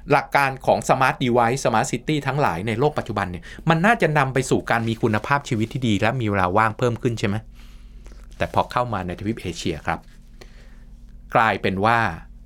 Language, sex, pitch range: Thai, male, 95-130 Hz